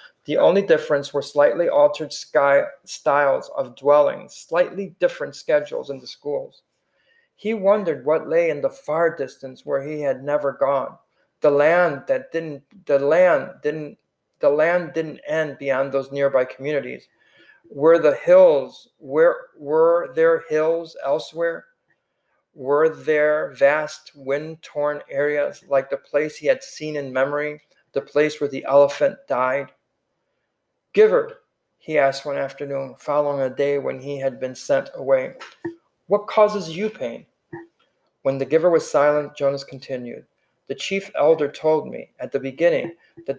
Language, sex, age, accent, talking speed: English, male, 50-69, American, 140 wpm